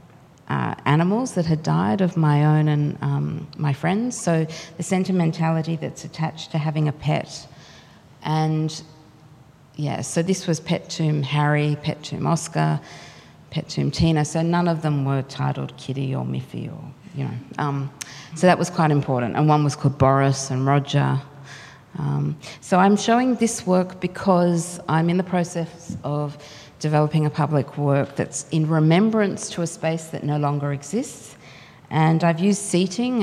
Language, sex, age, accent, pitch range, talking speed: English, female, 50-69, Australian, 145-170 Hz, 165 wpm